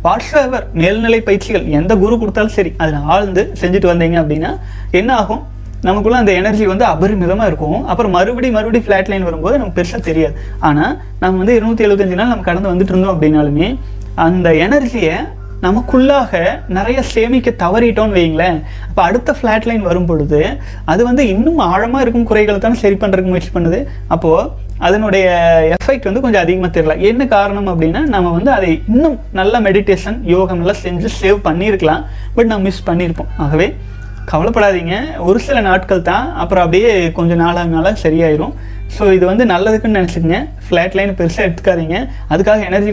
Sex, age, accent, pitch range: male, 30-49, native, 165-205 Hz